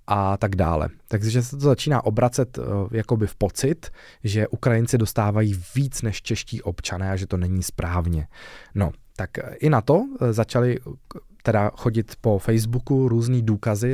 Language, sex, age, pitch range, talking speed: Czech, male, 20-39, 95-115 Hz, 150 wpm